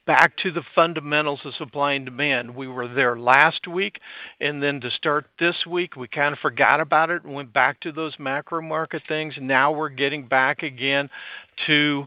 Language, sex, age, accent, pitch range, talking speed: English, male, 50-69, American, 140-160 Hz, 195 wpm